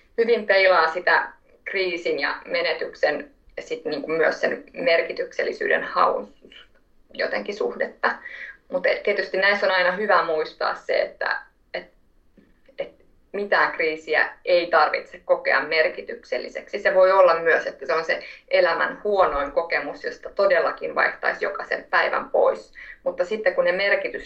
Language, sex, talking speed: Finnish, female, 125 wpm